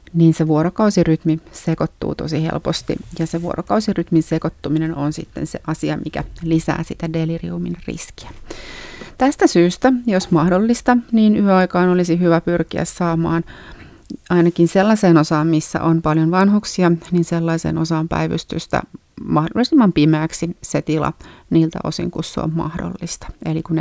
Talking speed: 130 wpm